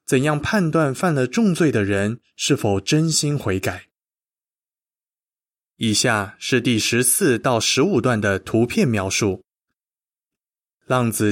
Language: Chinese